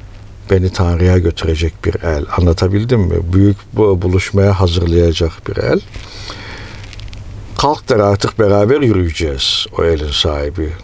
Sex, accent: male, native